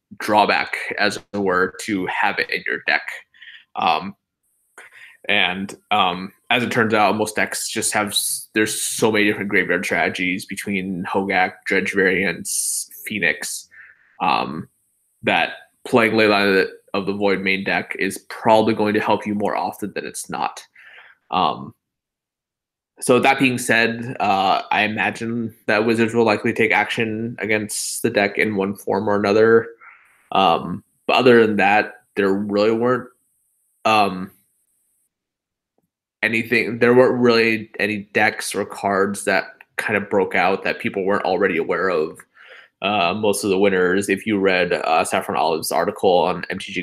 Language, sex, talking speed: English, male, 150 wpm